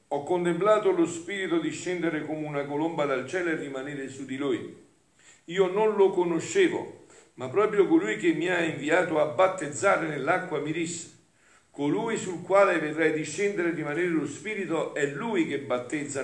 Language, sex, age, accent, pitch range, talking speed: Italian, male, 50-69, native, 140-200 Hz, 165 wpm